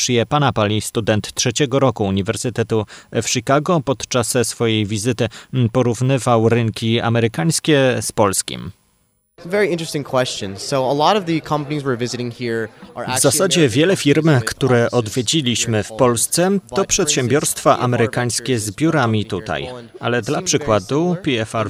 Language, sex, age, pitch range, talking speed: Polish, male, 30-49, 110-135 Hz, 95 wpm